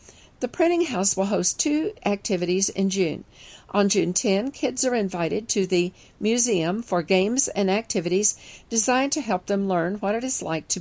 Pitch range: 180-230 Hz